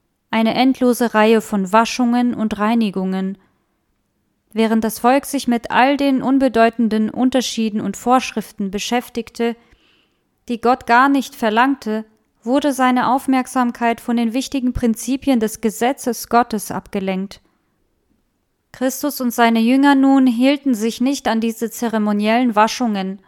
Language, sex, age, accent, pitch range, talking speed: German, female, 20-39, German, 215-255 Hz, 120 wpm